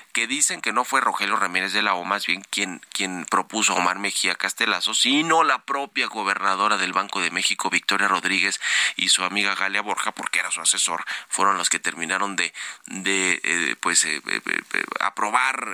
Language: Spanish